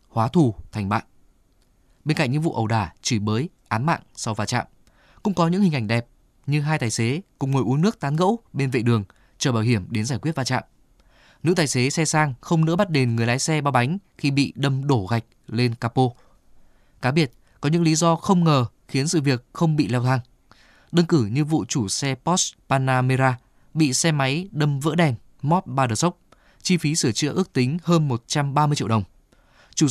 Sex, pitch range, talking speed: male, 115-155 Hz, 220 wpm